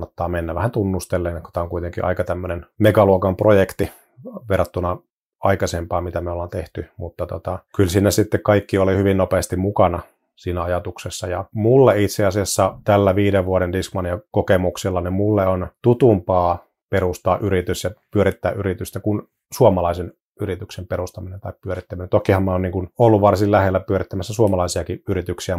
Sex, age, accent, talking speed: male, 30-49, native, 150 wpm